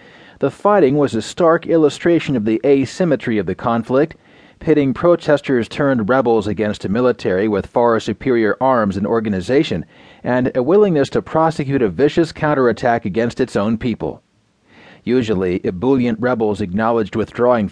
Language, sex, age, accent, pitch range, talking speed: English, male, 40-59, American, 110-140 Hz, 135 wpm